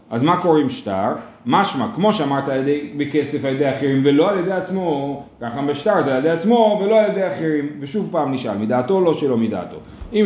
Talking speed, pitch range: 205 wpm, 135-215 Hz